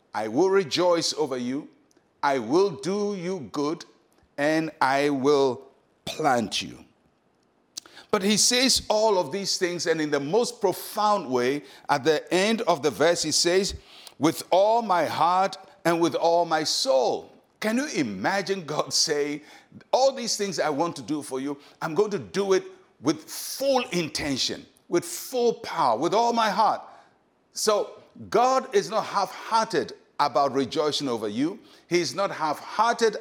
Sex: male